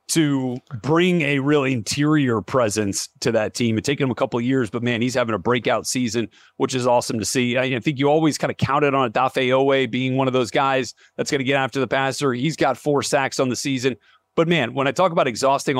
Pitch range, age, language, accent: 120-145 Hz, 30-49, English, American